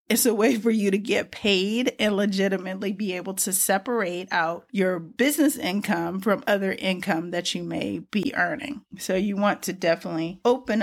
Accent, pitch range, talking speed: American, 180-225 Hz, 175 wpm